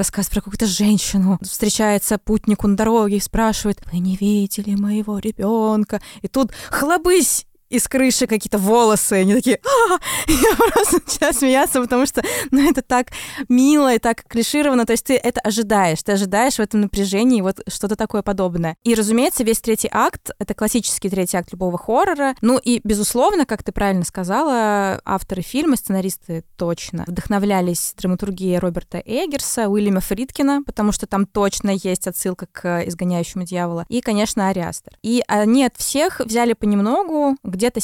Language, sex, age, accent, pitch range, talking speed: Russian, female, 20-39, native, 190-235 Hz, 160 wpm